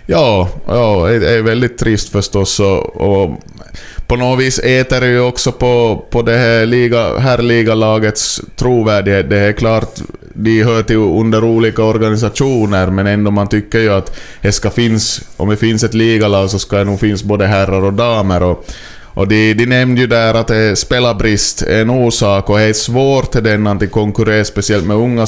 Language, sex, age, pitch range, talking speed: Swedish, male, 20-39, 100-115 Hz, 180 wpm